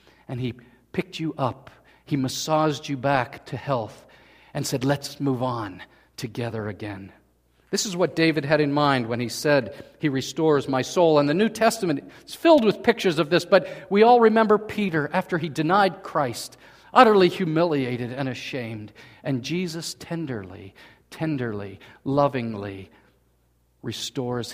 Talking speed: 150 wpm